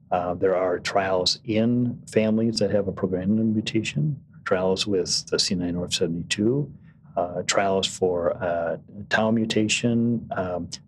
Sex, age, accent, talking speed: male, 40-59, American, 120 wpm